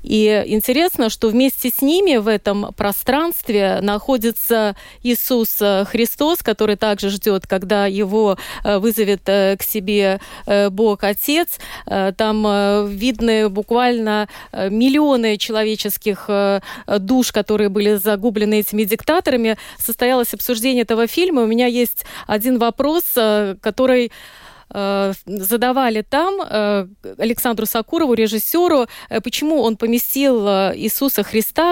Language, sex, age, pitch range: Russian, female, 30-49, 210-250 Hz